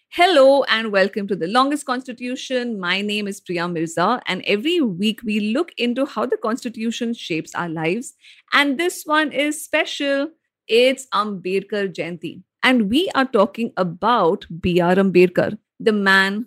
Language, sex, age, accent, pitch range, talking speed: English, female, 50-69, Indian, 195-280 Hz, 150 wpm